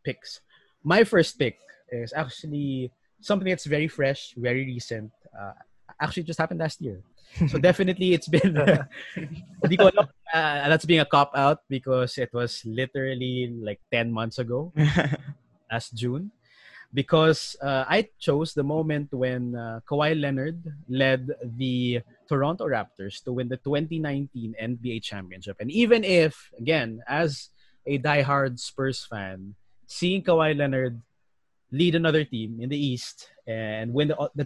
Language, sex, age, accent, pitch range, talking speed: English, male, 20-39, Filipino, 125-165 Hz, 140 wpm